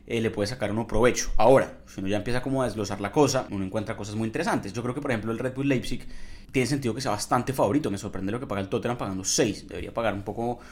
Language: Spanish